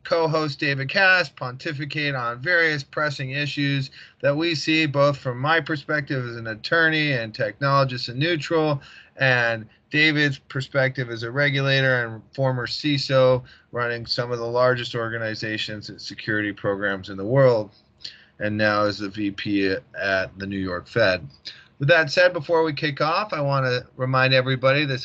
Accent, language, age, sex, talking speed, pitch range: American, English, 30-49, male, 160 wpm, 130-160 Hz